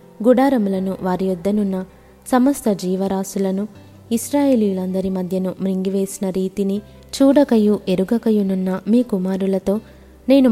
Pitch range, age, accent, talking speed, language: 185-215 Hz, 20-39, native, 80 wpm, Telugu